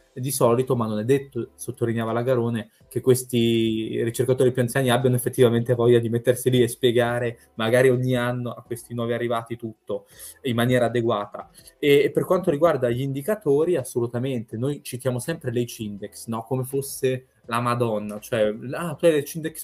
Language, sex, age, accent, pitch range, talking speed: Italian, male, 20-39, native, 115-130 Hz, 165 wpm